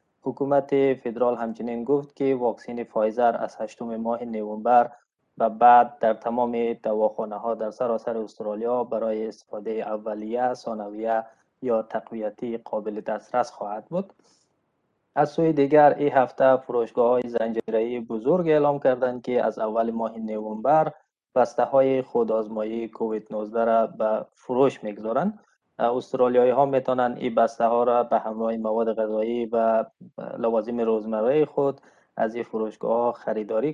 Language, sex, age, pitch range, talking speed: Persian, male, 20-39, 110-125 Hz, 125 wpm